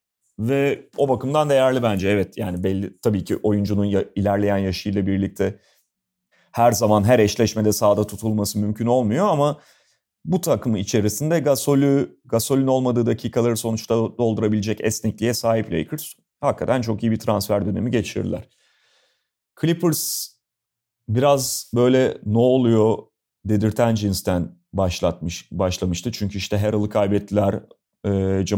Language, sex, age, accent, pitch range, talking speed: Turkish, male, 30-49, native, 100-130 Hz, 120 wpm